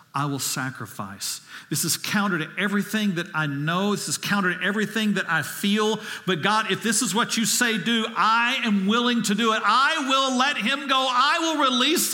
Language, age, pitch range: English, 50-69, 185-305 Hz